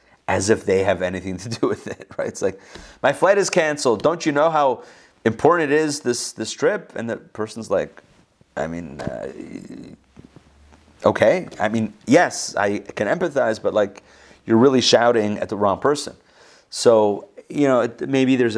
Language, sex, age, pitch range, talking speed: English, male, 30-49, 100-130 Hz, 175 wpm